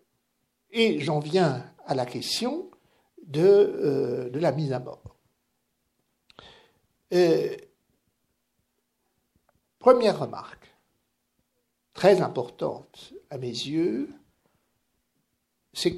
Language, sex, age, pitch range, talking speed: French, male, 60-79, 150-245 Hz, 80 wpm